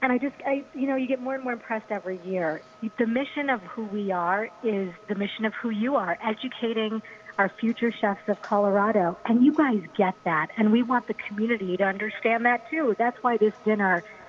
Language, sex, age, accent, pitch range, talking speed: English, female, 40-59, American, 190-235 Hz, 215 wpm